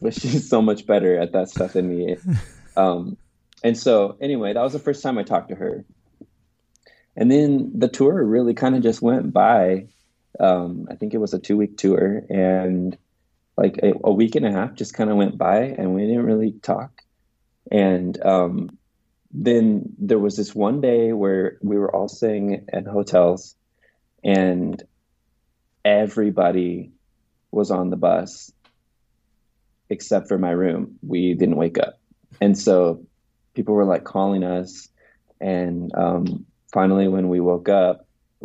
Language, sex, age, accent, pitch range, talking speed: English, male, 20-39, American, 90-110 Hz, 160 wpm